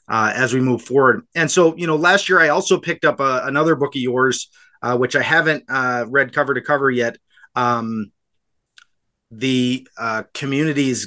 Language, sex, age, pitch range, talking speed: English, male, 30-49, 125-155 Hz, 185 wpm